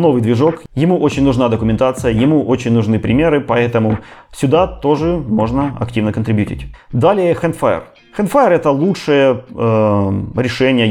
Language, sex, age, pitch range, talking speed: Russian, male, 20-39, 105-130 Hz, 125 wpm